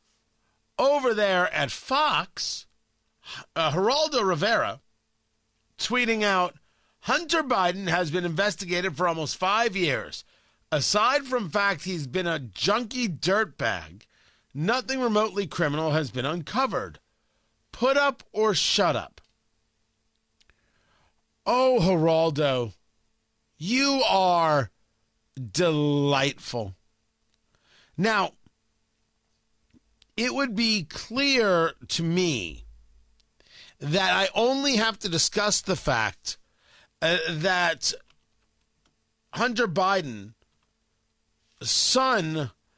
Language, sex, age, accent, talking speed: English, male, 40-59, American, 85 wpm